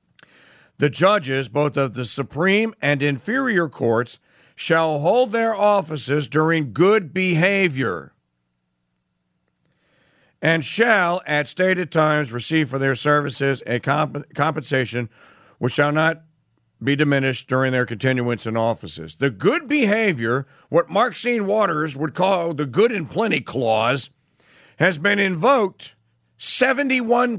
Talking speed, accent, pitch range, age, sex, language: 120 wpm, American, 135-195 Hz, 50-69, male, English